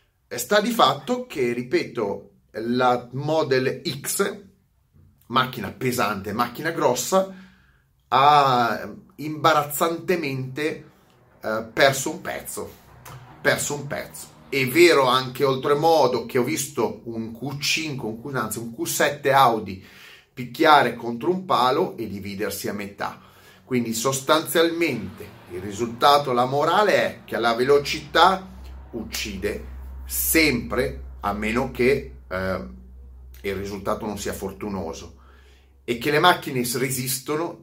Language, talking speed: Italian, 110 wpm